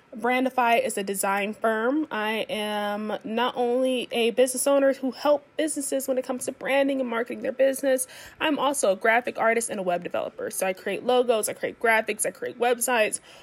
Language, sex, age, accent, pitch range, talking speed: English, female, 20-39, American, 225-275 Hz, 190 wpm